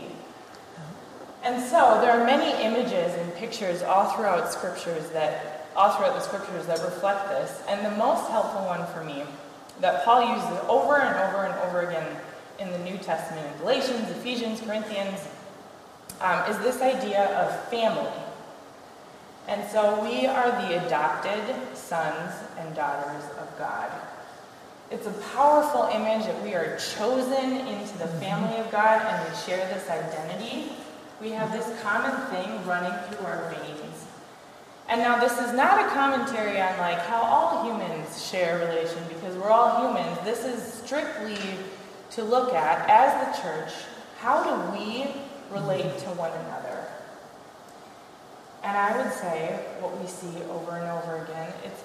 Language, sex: English, female